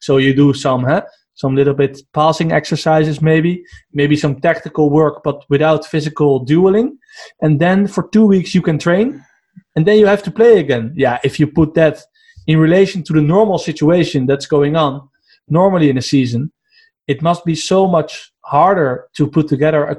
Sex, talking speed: male, 185 wpm